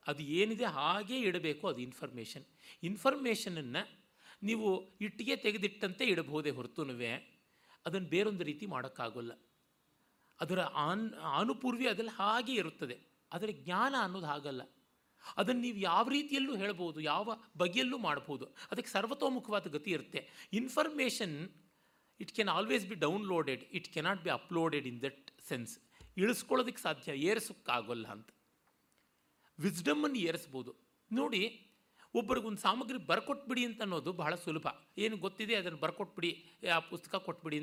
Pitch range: 155-220 Hz